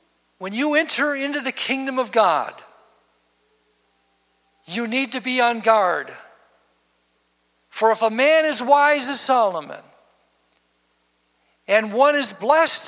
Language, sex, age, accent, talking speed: English, male, 60-79, American, 120 wpm